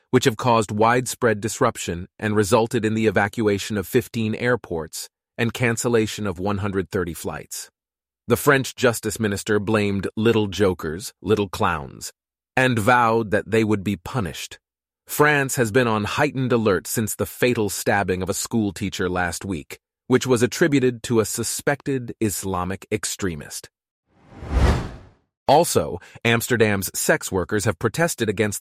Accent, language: American, English